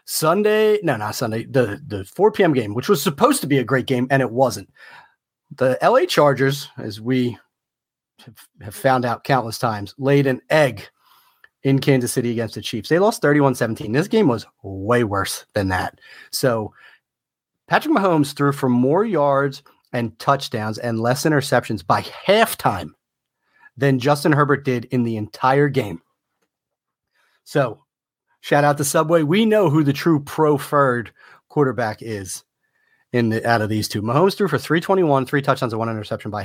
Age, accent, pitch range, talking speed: 30-49, American, 110-150 Hz, 165 wpm